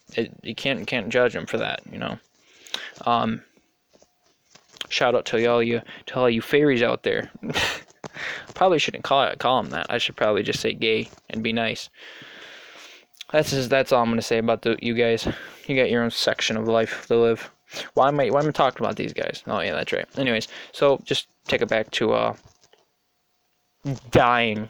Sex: male